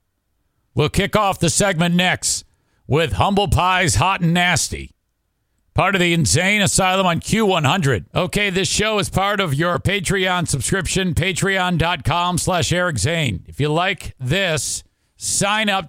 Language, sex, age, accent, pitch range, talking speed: English, male, 50-69, American, 135-190 Hz, 145 wpm